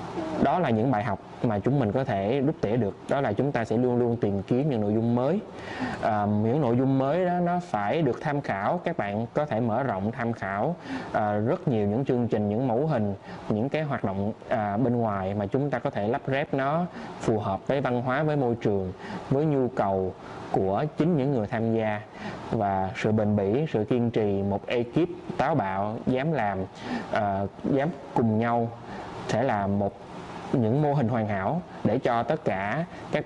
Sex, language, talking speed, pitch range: male, Vietnamese, 210 wpm, 105-140 Hz